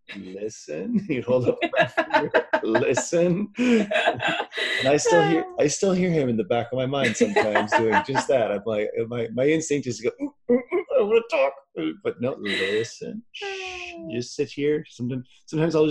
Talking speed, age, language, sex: 165 wpm, 30-49, English, male